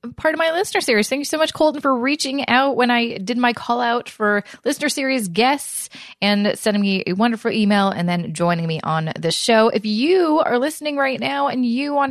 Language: English